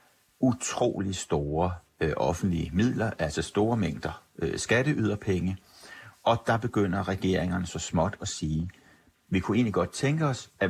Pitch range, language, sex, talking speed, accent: 90-125 Hz, Danish, male, 140 wpm, native